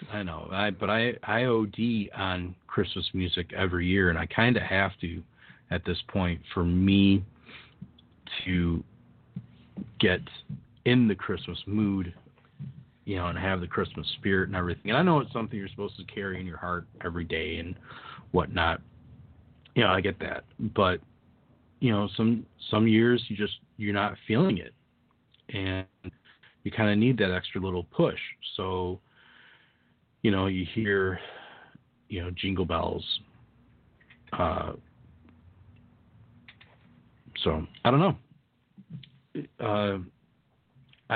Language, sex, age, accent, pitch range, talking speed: English, male, 40-59, American, 90-115 Hz, 140 wpm